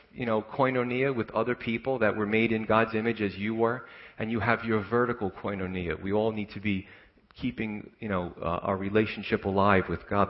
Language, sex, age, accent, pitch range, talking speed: English, male, 40-59, American, 100-115 Hz, 205 wpm